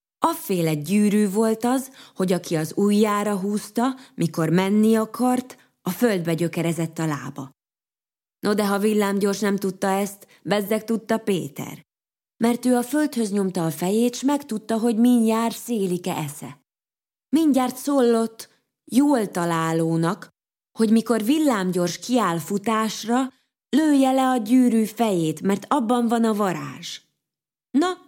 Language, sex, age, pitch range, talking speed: Hungarian, female, 20-39, 175-240 Hz, 130 wpm